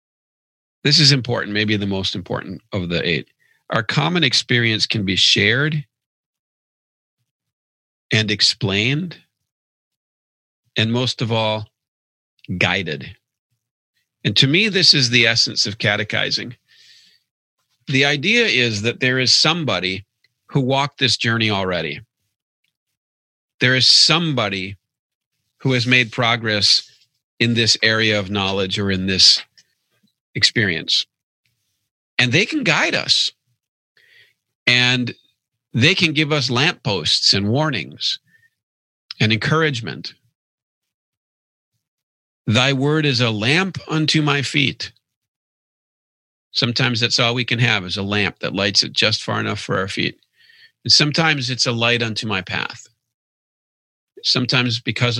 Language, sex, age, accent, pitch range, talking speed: English, male, 40-59, American, 105-135 Hz, 120 wpm